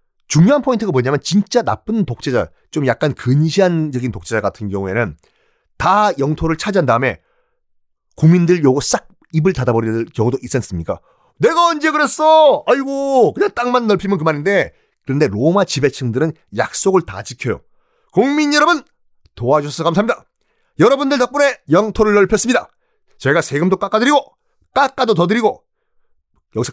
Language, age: Korean, 30-49